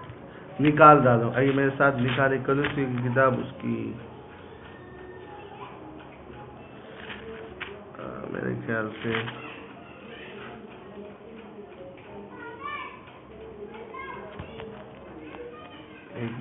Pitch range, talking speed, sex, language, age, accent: 130-170 Hz, 45 wpm, male, Hindi, 50-69, native